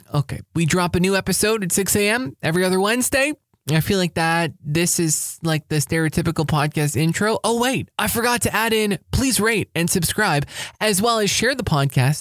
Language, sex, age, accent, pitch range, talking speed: English, male, 20-39, American, 130-170 Hz, 195 wpm